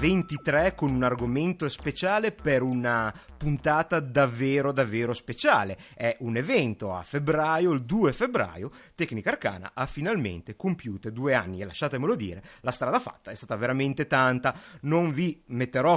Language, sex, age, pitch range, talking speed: Italian, male, 30-49, 115-155 Hz, 145 wpm